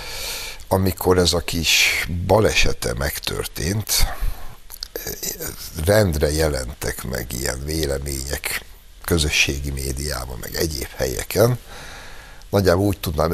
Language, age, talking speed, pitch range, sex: Hungarian, 60-79, 85 wpm, 75-95 Hz, male